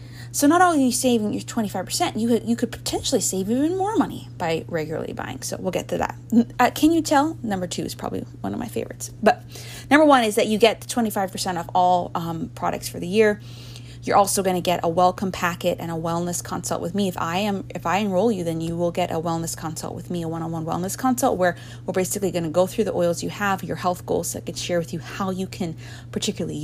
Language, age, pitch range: English, 20-39, 140-215 Hz